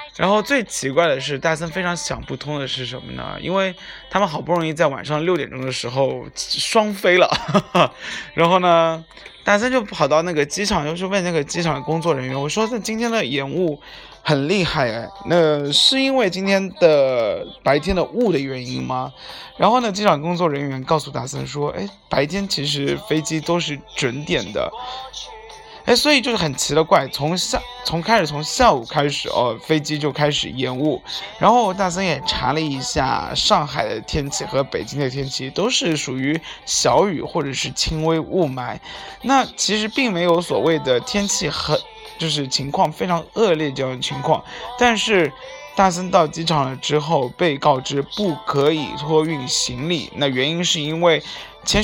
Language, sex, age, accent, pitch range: Chinese, male, 20-39, native, 145-195 Hz